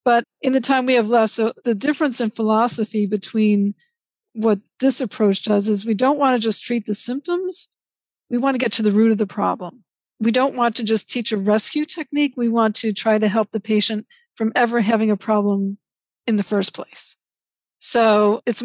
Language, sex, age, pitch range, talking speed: English, female, 50-69, 210-250 Hz, 205 wpm